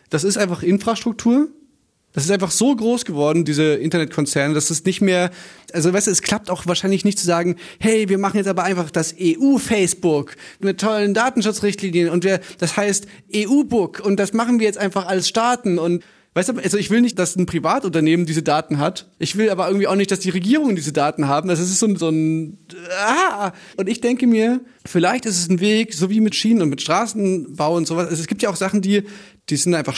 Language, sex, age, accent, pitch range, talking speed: German, male, 30-49, German, 165-205 Hz, 215 wpm